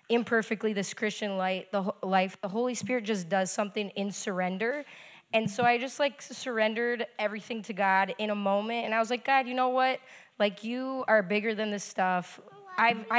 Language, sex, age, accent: English, female, 10-29, American